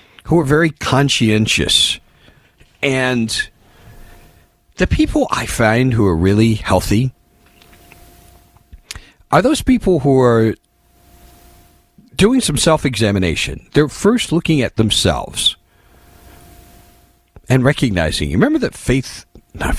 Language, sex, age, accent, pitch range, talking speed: English, male, 50-69, American, 90-130 Hz, 100 wpm